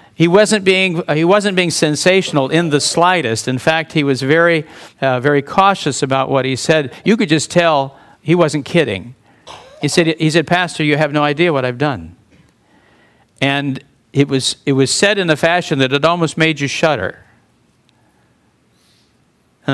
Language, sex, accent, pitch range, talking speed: English, male, American, 130-170 Hz, 165 wpm